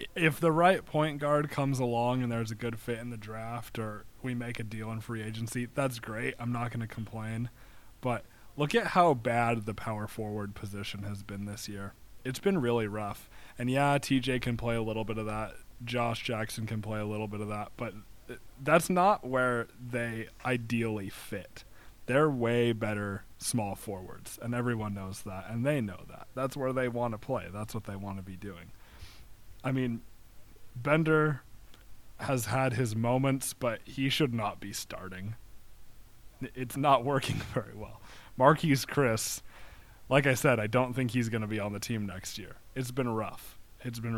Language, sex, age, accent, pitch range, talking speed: English, male, 20-39, American, 105-130 Hz, 190 wpm